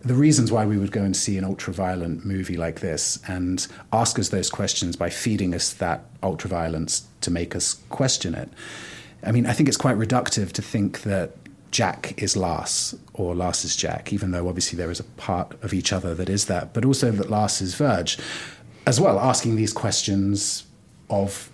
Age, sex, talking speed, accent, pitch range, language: 30-49, male, 195 wpm, British, 95-115 Hz, English